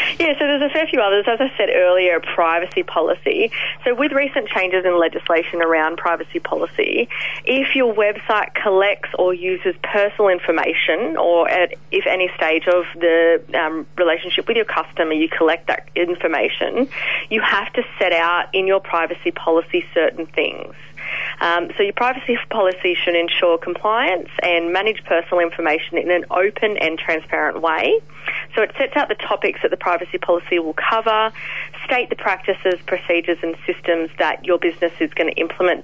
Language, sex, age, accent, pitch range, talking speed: English, female, 30-49, Australian, 170-235 Hz, 165 wpm